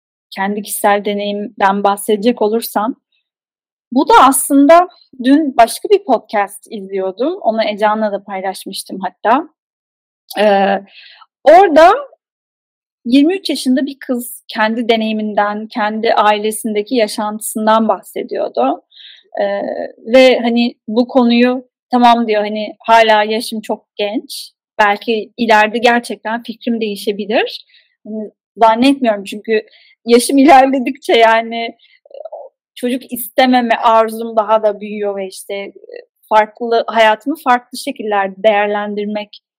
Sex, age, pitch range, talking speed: female, 10-29, 215-270 Hz, 100 wpm